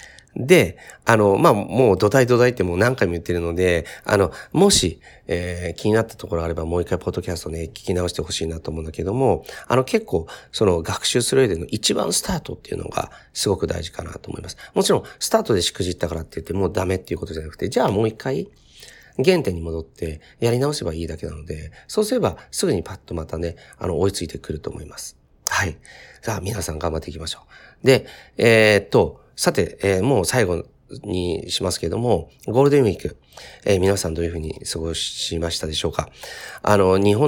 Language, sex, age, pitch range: Japanese, male, 40-59, 80-100 Hz